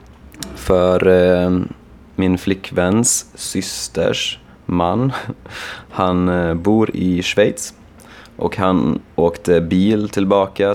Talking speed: 80 wpm